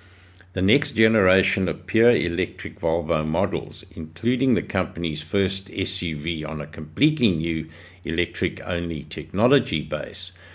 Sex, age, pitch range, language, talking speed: male, 60-79, 85-100 Hz, English, 115 wpm